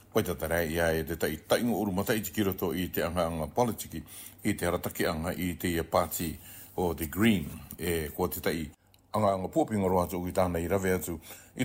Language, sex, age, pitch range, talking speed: English, male, 60-79, 85-100 Hz, 185 wpm